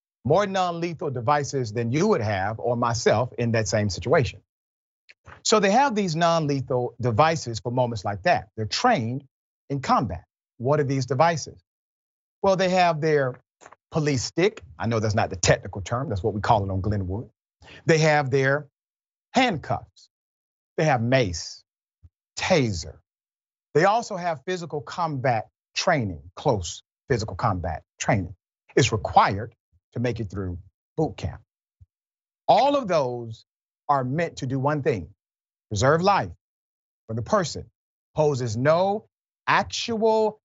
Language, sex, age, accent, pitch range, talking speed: English, male, 40-59, American, 115-170 Hz, 140 wpm